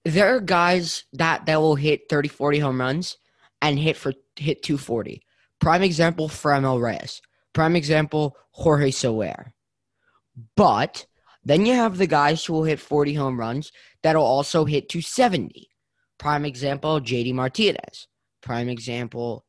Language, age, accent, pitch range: English, 20-39, American, 130-165 Hz